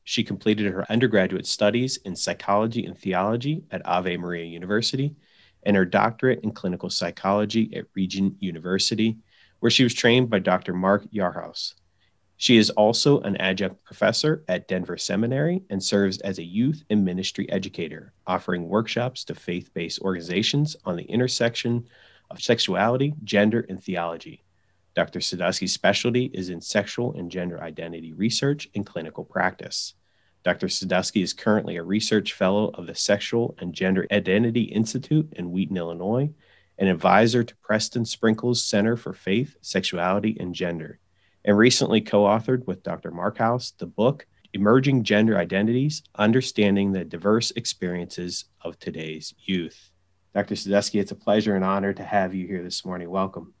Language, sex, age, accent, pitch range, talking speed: English, male, 30-49, American, 90-115 Hz, 150 wpm